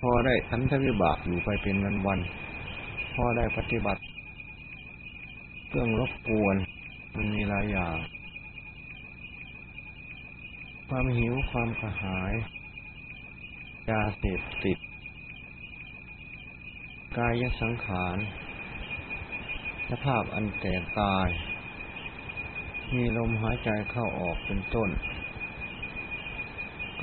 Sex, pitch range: male, 95-120 Hz